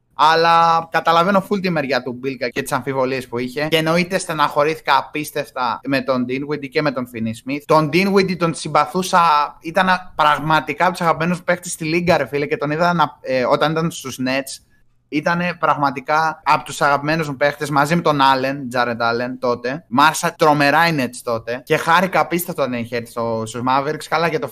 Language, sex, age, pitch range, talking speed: Greek, male, 20-39, 130-160 Hz, 185 wpm